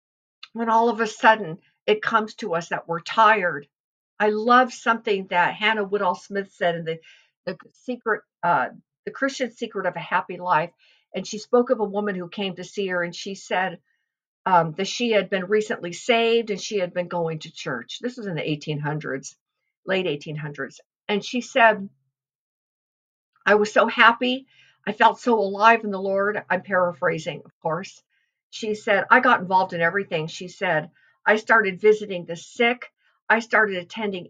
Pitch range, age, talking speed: 180-225 Hz, 50-69, 180 wpm